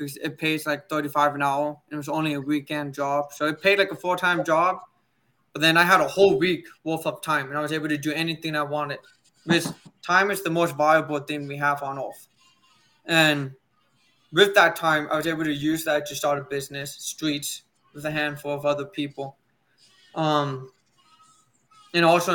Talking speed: 200 wpm